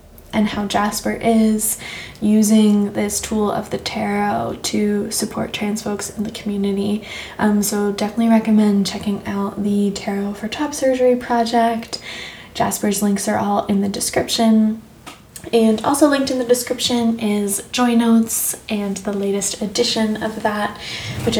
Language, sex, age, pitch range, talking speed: English, female, 10-29, 200-220 Hz, 145 wpm